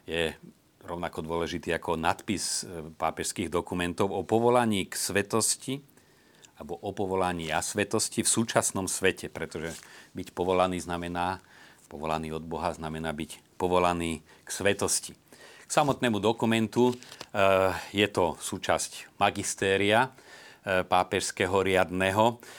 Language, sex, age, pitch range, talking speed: Slovak, male, 40-59, 85-105 Hz, 105 wpm